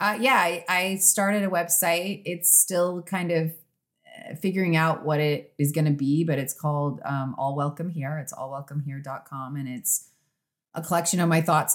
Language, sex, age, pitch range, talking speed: English, female, 30-49, 135-160 Hz, 195 wpm